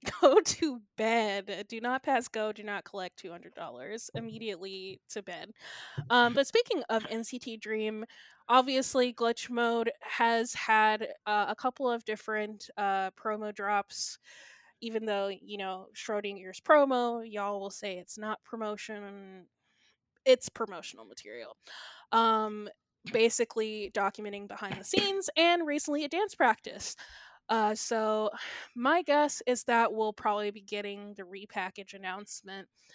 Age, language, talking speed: 20-39, English, 135 wpm